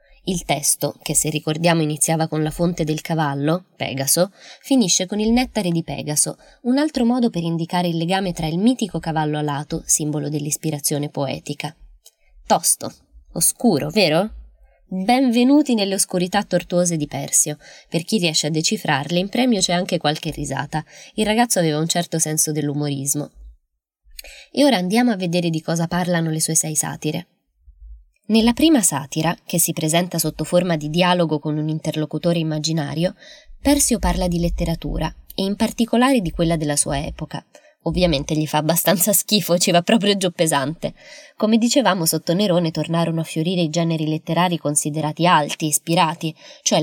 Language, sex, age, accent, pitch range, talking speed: Italian, female, 20-39, native, 155-195 Hz, 155 wpm